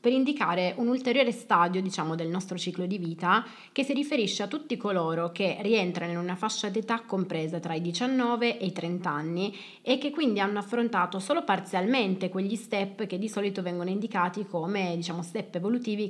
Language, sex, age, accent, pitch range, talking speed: Italian, female, 20-39, native, 175-220 Hz, 185 wpm